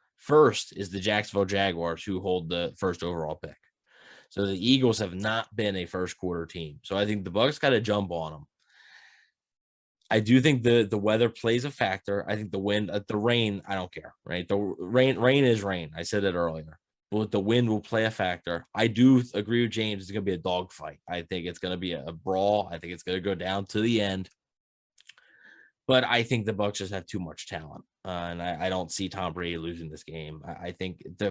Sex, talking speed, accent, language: male, 225 wpm, American, English